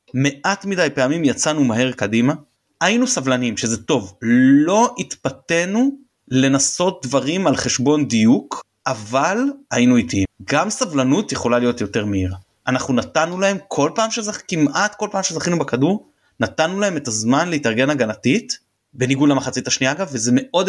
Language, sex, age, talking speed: Hebrew, male, 30-49, 140 wpm